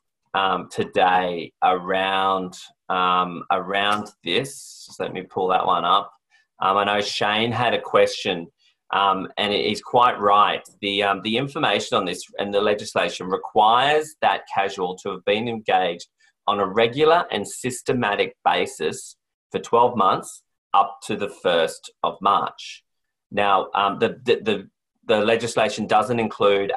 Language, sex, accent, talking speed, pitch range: English, male, Australian, 145 wpm, 95-125 Hz